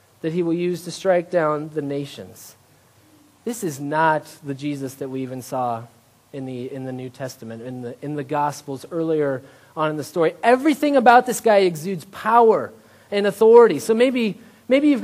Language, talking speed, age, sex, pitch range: English, 185 wpm, 30-49, male, 155-230 Hz